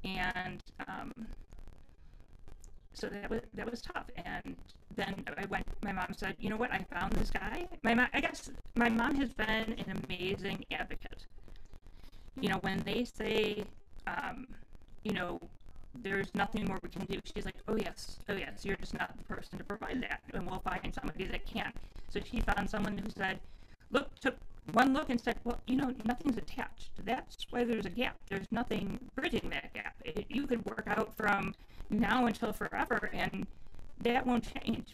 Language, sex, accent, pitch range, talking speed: English, female, American, 190-230 Hz, 185 wpm